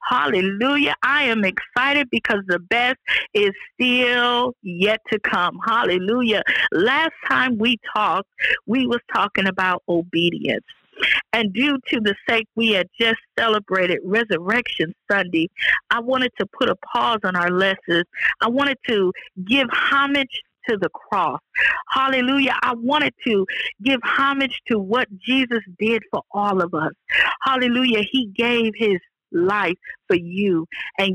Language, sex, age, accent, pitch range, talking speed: English, female, 50-69, American, 185-255 Hz, 140 wpm